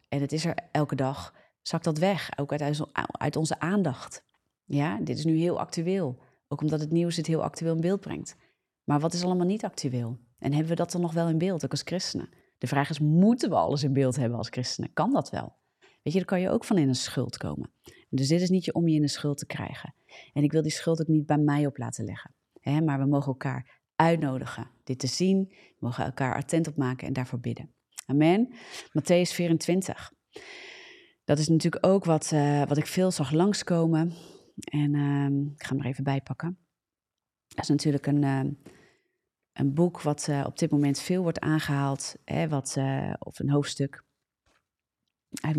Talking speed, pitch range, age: 205 wpm, 140-170 Hz, 30-49